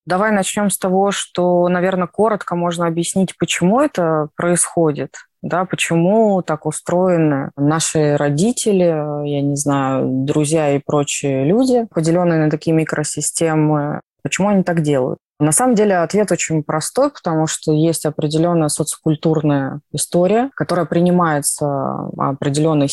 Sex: female